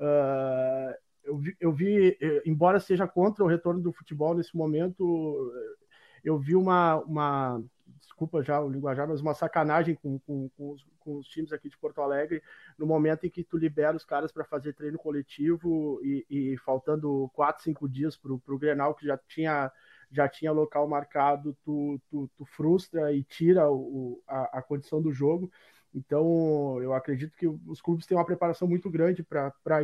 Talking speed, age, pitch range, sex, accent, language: 180 wpm, 20-39, 145-170 Hz, male, Brazilian, Portuguese